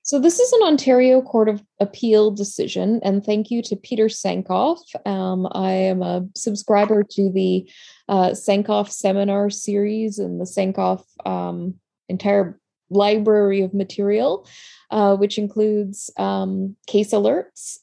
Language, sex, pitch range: English, female, 190-225 Hz